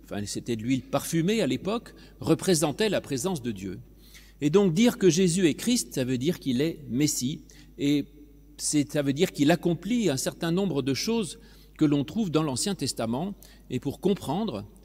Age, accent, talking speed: 40-59, French, 185 wpm